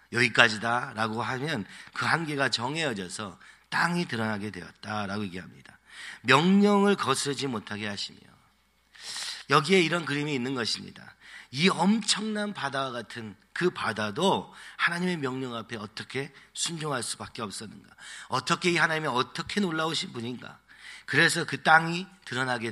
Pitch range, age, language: 110-165 Hz, 40-59, Korean